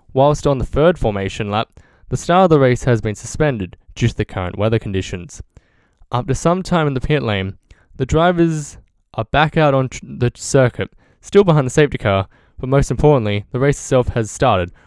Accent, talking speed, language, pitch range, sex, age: Australian, 200 wpm, English, 115-150 Hz, male, 10-29